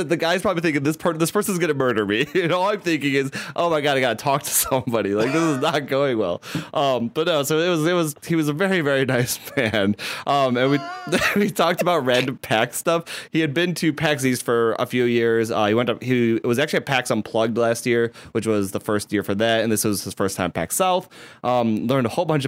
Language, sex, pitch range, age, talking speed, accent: English, male, 110-155 Hz, 20-39, 265 wpm, American